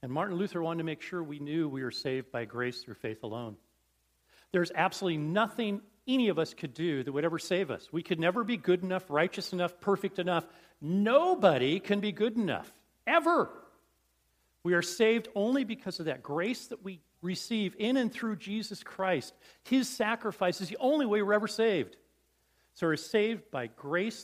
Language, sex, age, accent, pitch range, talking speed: English, male, 40-59, American, 145-215 Hz, 190 wpm